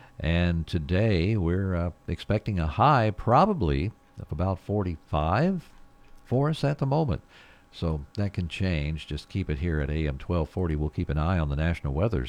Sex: male